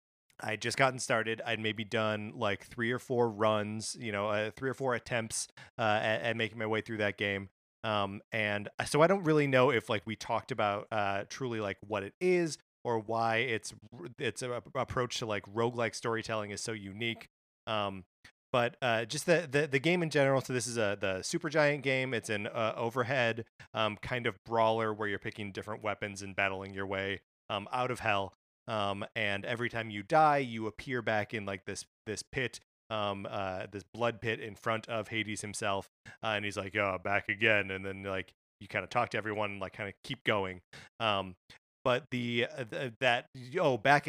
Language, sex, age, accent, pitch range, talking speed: English, male, 30-49, American, 105-120 Hz, 205 wpm